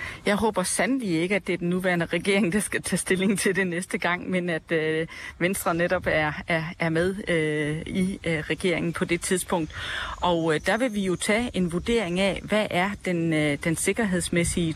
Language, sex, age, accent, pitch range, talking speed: Danish, female, 40-59, native, 165-200 Hz, 205 wpm